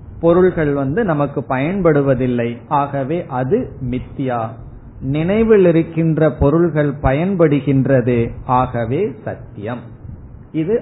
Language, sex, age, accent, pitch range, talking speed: Tamil, male, 50-69, native, 120-165 Hz, 80 wpm